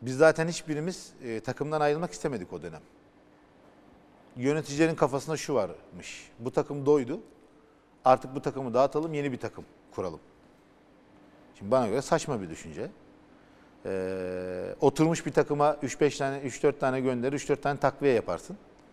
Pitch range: 125-150 Hz